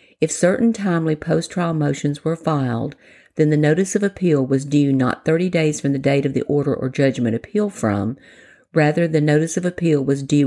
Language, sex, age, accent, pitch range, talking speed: English, female, 50-69, American, 140-170 Hz, 195 wpm